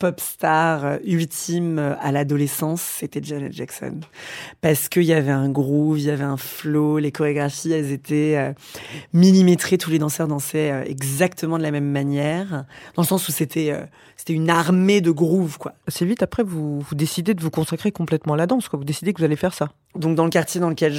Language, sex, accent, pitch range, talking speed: French, female, French, 140-165 Hz, 205 wpm